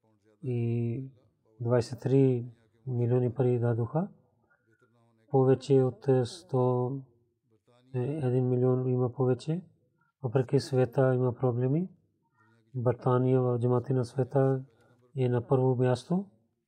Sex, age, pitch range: male, 30-49, 120-135 Hz